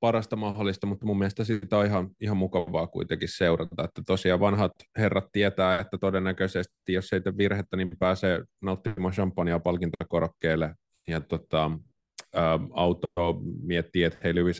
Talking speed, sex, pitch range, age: 145 wpm, male, 80-95 Hz, 30-49